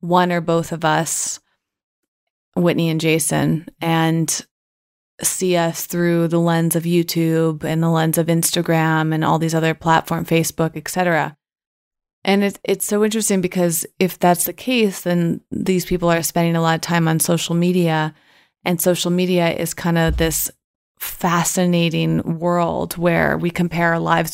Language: English